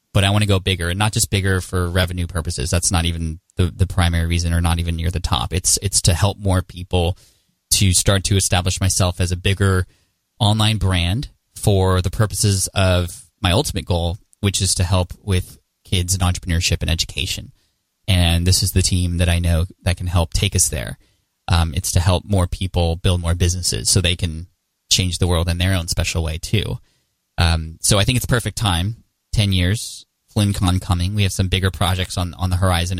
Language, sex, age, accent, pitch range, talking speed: English, male, 20-39, American, 90-105 Hz, 205 wpm